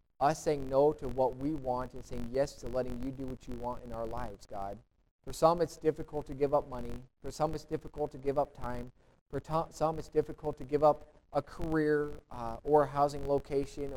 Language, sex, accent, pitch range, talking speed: English, male, American, 120-150 Hz, 225 wpm